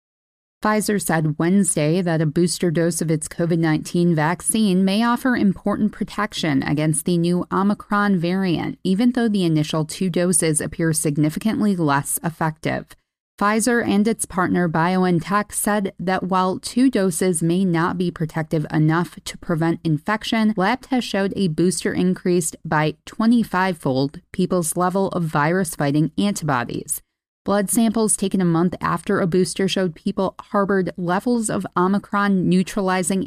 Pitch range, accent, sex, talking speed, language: 160-200 Hz, American, female, 135 wpm, English